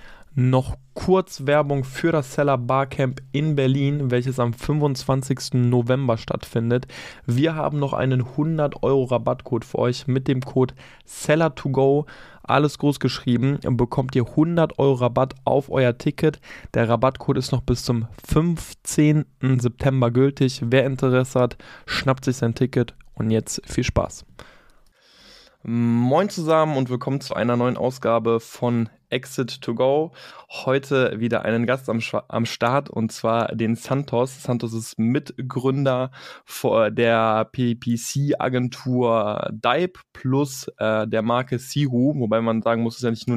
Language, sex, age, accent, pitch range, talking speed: German, male, 20-39, German, 115-135 Hz, 135 wpm